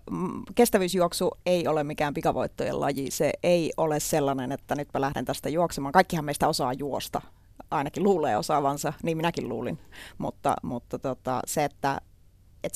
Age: 30-49